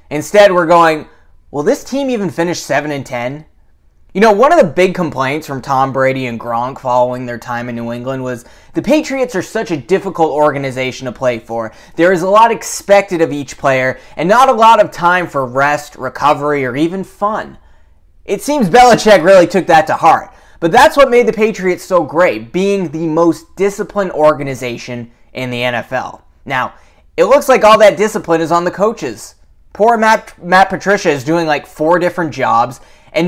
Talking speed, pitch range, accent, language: 190 wpm, 130-190 Hz, American, English